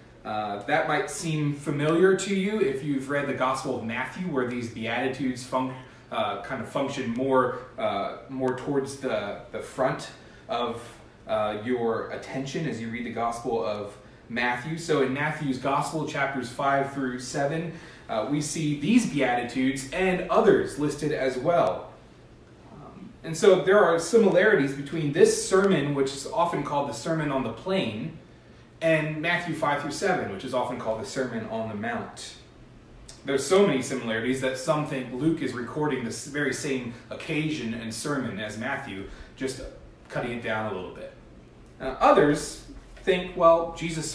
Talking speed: 165 wpm